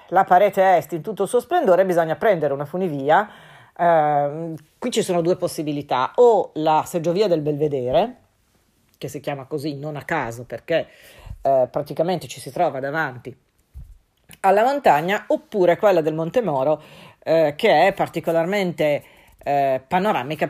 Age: 40-59